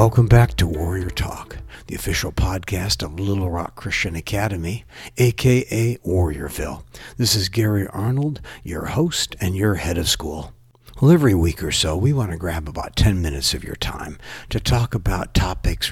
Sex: male